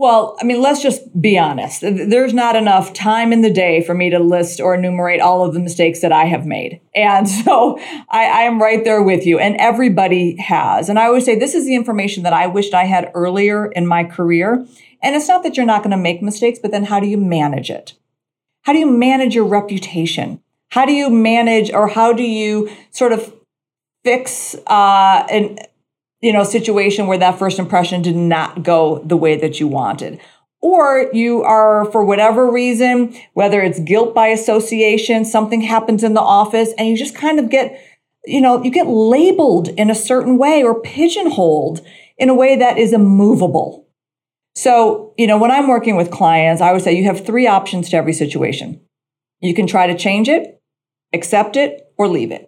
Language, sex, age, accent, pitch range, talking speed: English, female, 50-69, American, 180-240 Hz, 200 wpm